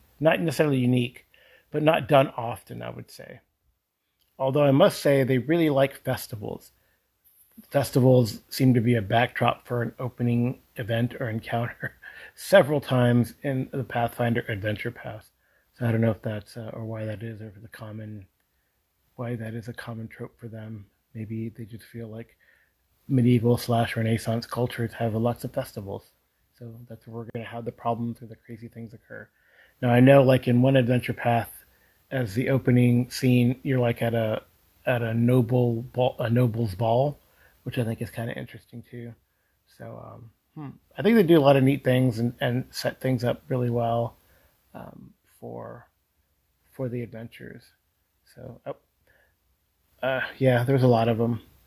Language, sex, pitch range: English, male, 110-125 Hz